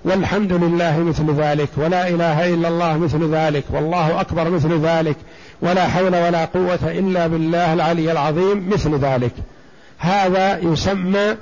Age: 50-69